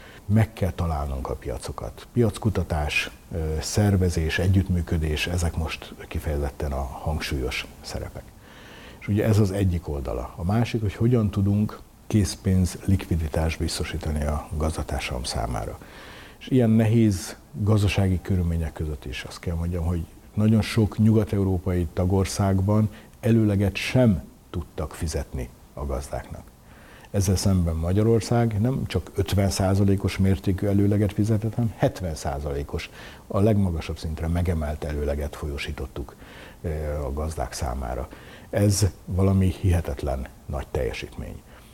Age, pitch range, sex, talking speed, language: 60-79, 80-105 Hz, male, 110 wpm, Hungarian